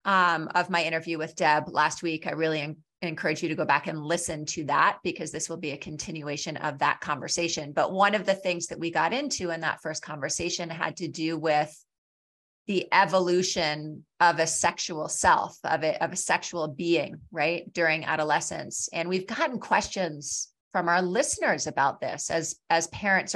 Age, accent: 30-49, American